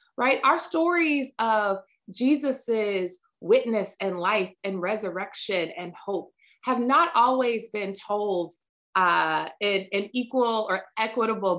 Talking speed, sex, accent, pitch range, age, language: 120 wpm, female, American, 180-240 Hz, 20-39, English